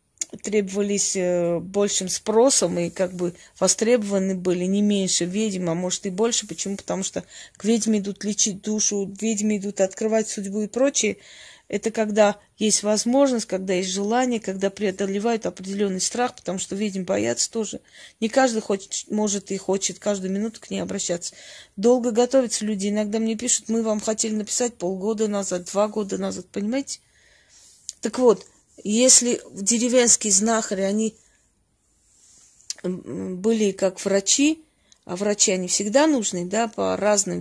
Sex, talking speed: female, 145 wpm